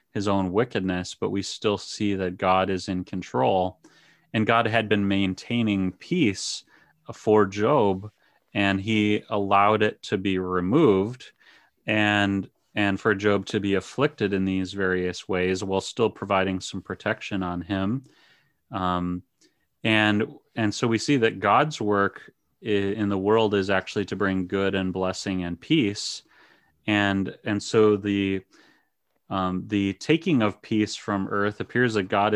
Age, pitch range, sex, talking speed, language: 30-49, 95-105 Hz, male, 150 wpm, English